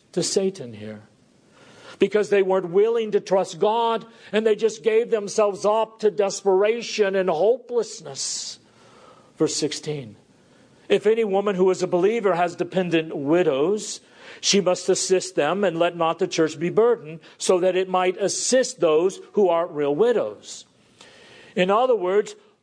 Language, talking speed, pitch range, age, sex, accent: English, 145 wpm, 150-210 Hz, 50-69, male, American